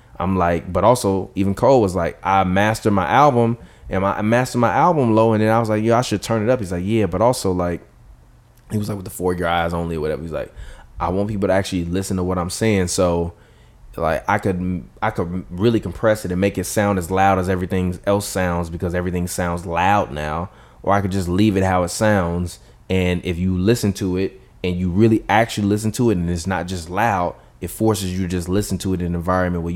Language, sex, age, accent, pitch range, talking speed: English, male, 20-39, American, 90-115 Hz, 250 wpm